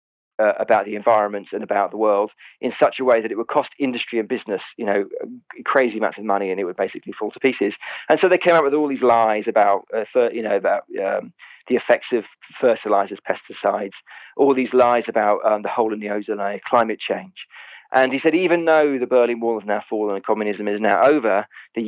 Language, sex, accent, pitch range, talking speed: English, male, British, 110-155 Hz, 225 wpm